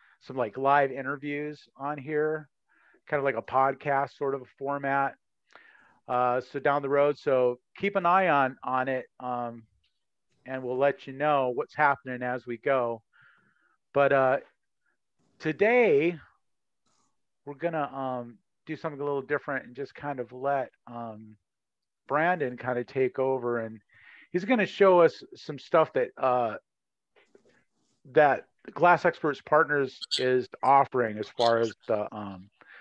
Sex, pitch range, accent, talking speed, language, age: male, 120-145 Hz, American, 150 wpm, English, 40-59